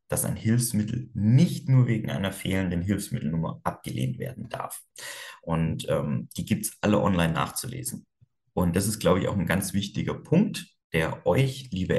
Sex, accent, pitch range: male, German, 90-120 Hz